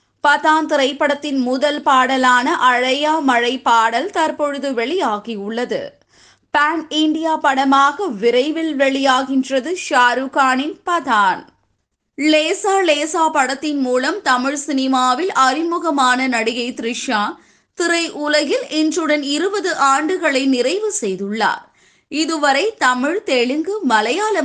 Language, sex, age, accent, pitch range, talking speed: Tamil, female, 20-39, native, 255-320 Hz, 85 wpm